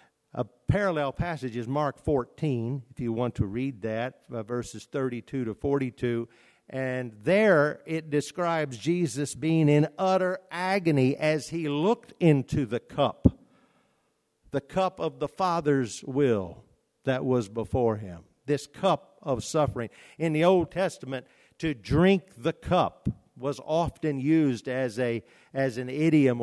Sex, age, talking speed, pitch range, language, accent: male, 50-69, 140 wpm, 120-160 Hz, English, American